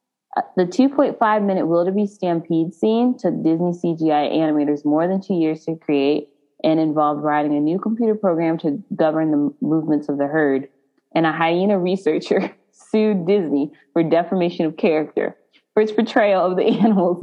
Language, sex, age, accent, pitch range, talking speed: English, female, 20-39, American, 155-220 Hz, 155 wpm